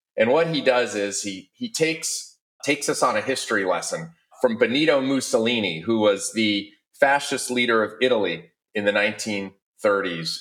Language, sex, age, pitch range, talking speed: English, male, 30-49, 105-145 Hz, 155 wpm